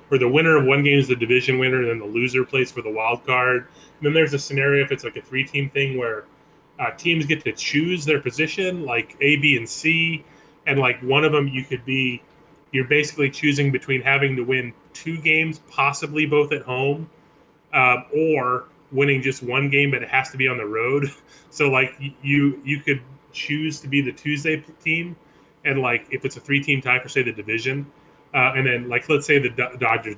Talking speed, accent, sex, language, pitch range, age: 220 wpm, American, male, English, 125-145 Hz, 30-49